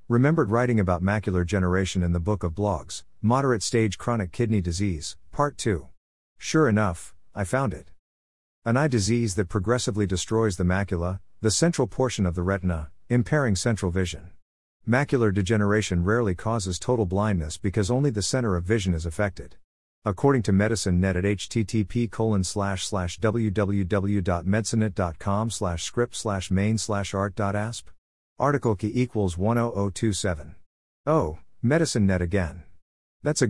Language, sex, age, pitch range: English, male, 50-69, 90-115 Hz